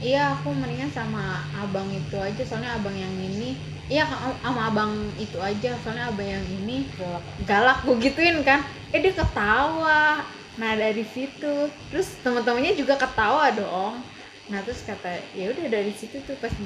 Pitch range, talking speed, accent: 180-250 Hz, 160 wpm, native